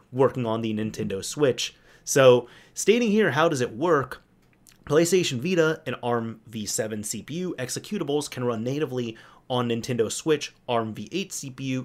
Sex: male